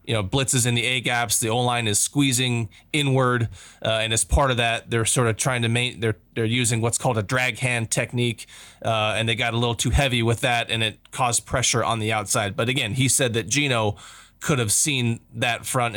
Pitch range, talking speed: 110-125 Hz, 235 wpm